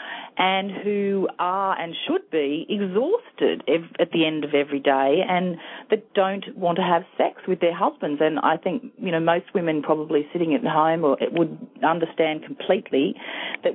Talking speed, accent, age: 165 wpm, Australian, 40-59